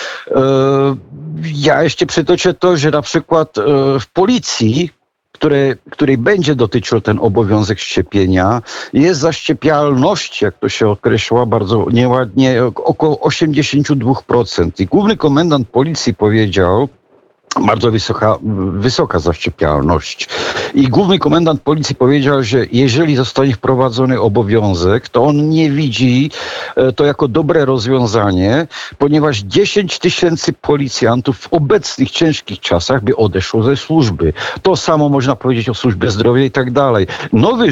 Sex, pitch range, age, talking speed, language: male, 105-145 Hz, 50-69, 120 wpm, Polish